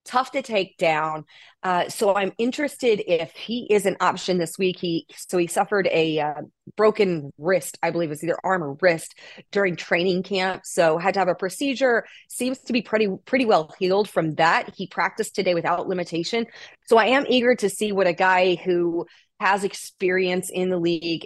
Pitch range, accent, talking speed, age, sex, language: 160-195 Hz, American, 195 wpm, 30-49, female, English